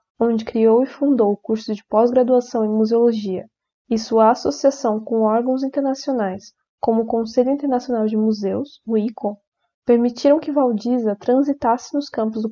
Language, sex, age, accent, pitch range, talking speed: Portuguese, female, 10-29, Brazilian, 220-260 Hz, 150 wpm